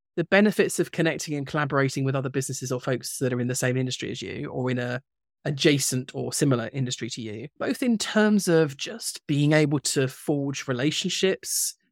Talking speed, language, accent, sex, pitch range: 190 wpm, English, British, male, 130-155 Hz